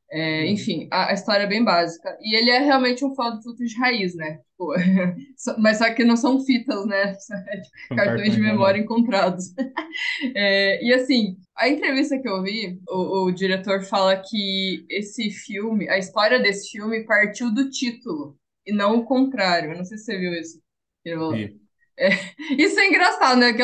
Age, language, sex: 20-39, Portuguese, female